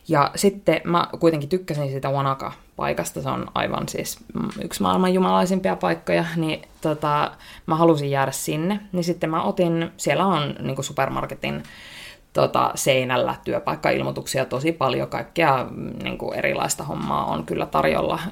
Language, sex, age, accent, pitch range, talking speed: Finnish, female, 20-39, native, 135-185 Hz, 135 wpm